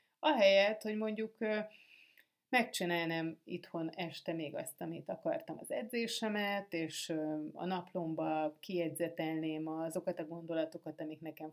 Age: 30-49